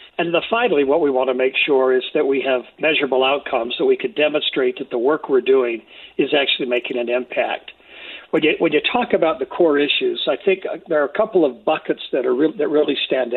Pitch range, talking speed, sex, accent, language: 130-170 Hz, 215 wpm, male, American, English